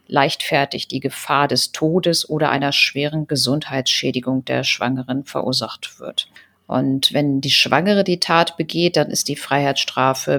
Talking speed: 140 wpm